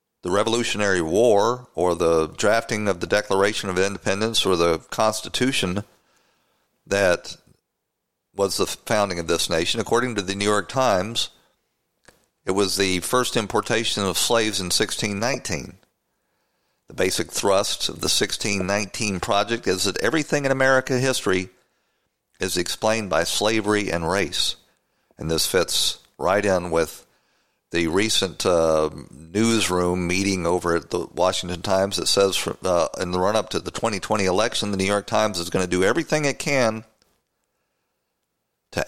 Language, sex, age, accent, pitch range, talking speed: English, male, 50-69, American, 90-110 Hz, 145 wpm